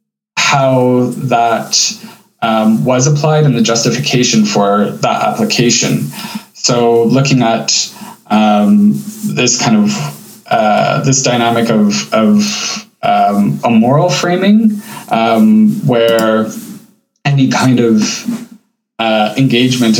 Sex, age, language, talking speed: male, 20-39, English, 100 wpm